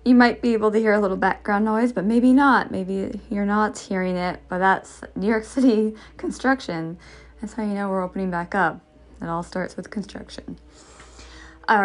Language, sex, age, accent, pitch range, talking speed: English, female, 20-39, American, 175-225 Hz, 190 wpm